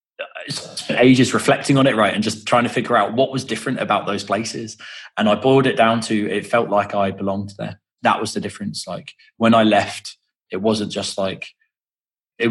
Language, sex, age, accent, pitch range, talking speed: English, male, 20-39, British, 100-115 Hz, 205 wpm